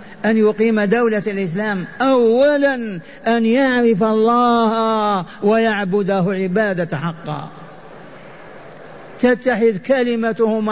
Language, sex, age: Arabic, male, 50-69